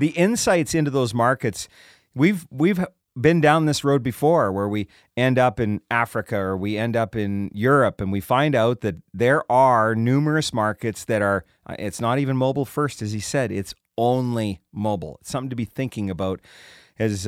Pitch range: 105-140 Hz